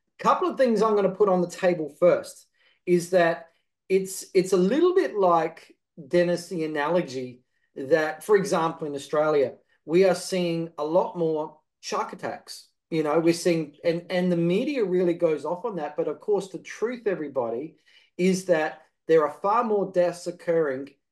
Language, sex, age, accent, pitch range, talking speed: English, male, 40-59, Australian, 155-185 Hz, 180 wpm